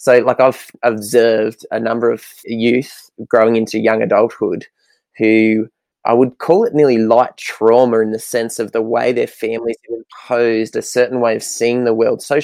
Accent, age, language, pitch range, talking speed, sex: Australian, 20-39, English, 115-125 Hz, 185 wpm, male